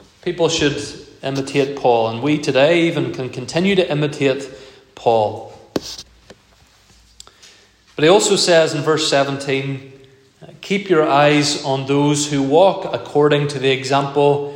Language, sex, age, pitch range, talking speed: English, male, 30-49, 135-155 Hz, 130 wpm